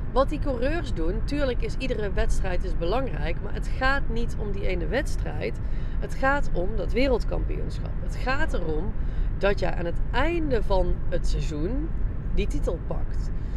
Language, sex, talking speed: Dutch, female, 165 wpm